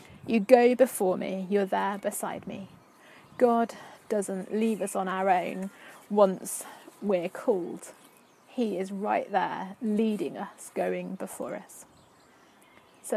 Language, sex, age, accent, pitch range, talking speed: English, female, 30-49, British, 195-245 Hz, 130 wpm